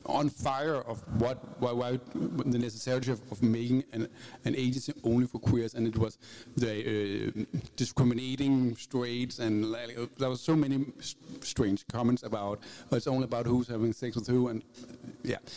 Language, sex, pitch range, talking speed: Danish, male, 110-130 Hz, 175 wpm